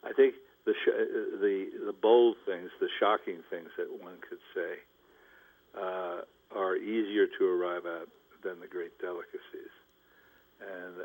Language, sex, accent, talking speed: English, male, American, 140 wpm